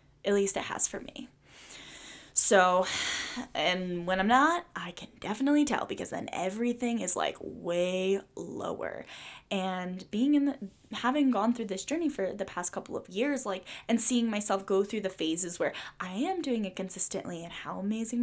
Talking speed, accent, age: 180 wpm, American, 10-29